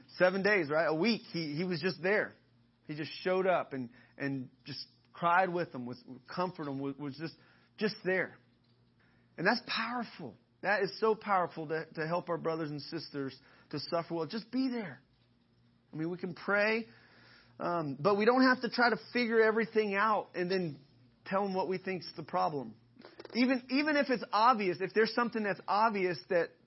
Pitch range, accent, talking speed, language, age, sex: 145-195 Hz, American, 185 wpm, English, 30-49, male